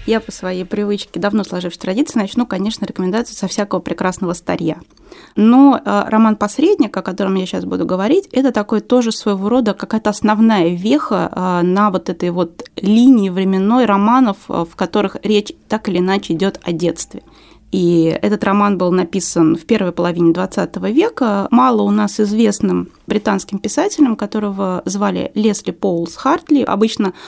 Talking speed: 150 wpm